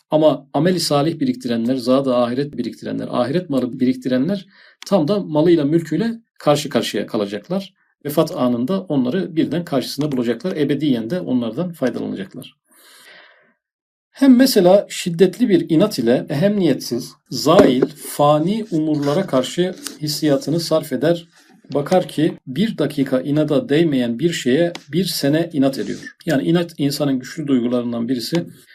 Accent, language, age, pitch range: native, Turkish, 40-59, 135-185 Hz